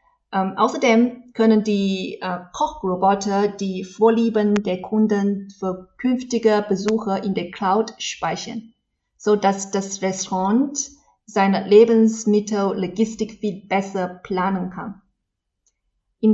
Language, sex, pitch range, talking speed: German, female, 195-235 Hz, 105 wpm